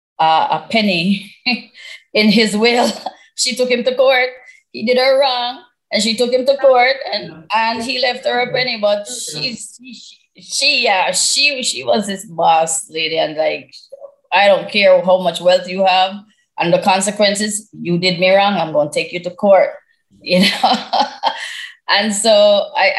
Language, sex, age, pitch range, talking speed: English, female, 20-39, 165-250 Hz, 180 wpm